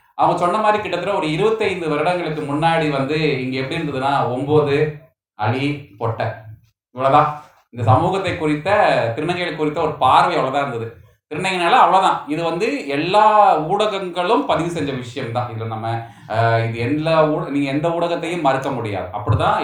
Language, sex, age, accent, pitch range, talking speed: Tamil, male, 30-49, native, 120-170 Hz, 135 wpm